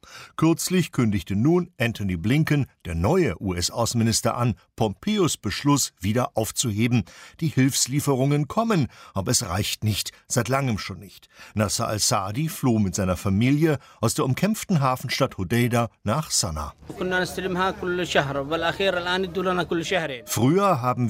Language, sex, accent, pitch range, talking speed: German, male, German, 105-155 Hz, 110 wpm